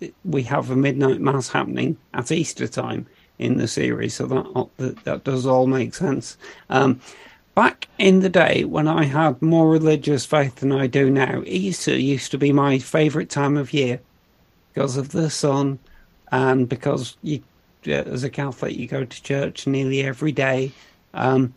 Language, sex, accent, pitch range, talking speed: English, male, British, 130-150 Hz, 170 wpm